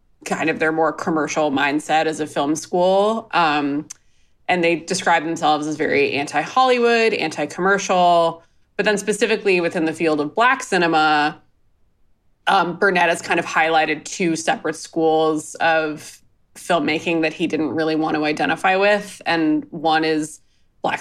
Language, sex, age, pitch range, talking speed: English, female, 20-39, 150-180 Hz, 145 wpm